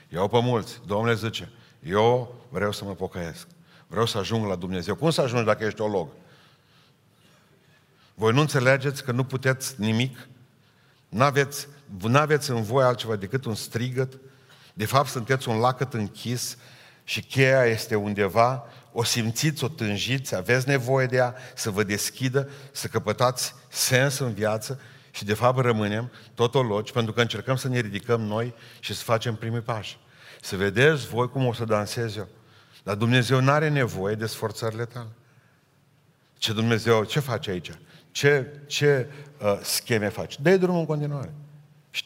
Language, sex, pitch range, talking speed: Romanian, male, 110-140 Hz, 160 wpm